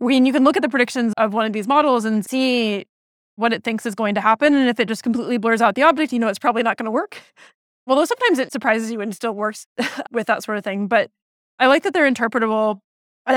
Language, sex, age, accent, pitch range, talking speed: English, female, 20-39, American, 220-255 Hz, 265 wpm